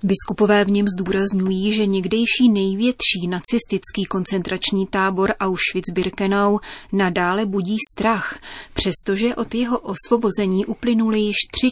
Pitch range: 185-215 Hz